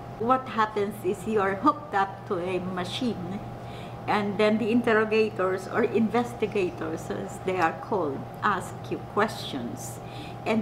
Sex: female